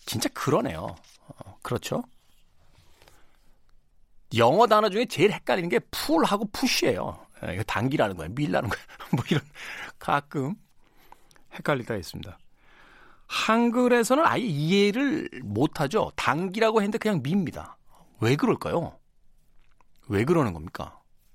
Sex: male